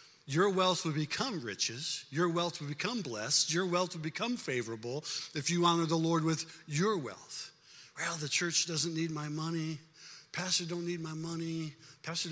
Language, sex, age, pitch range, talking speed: English, male, 50-69, 140-180 Hz, 175 wpm